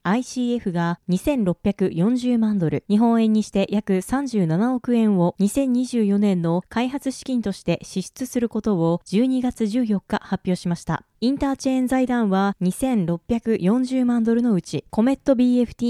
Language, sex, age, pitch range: Japanese, female, 20-39, 190-255 Hz